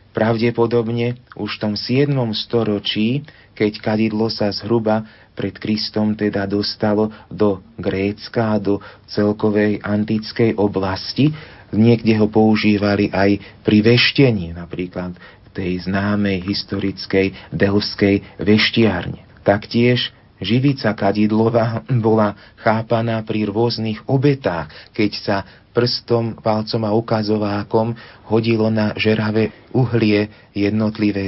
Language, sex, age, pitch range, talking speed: Slovak, male, 40-59, 100-115 Hz, 100 wpm